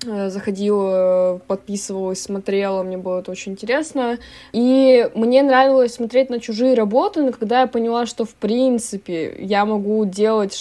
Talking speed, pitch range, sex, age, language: 140 wpm, 190-235 Hz, female, 20-39, Russian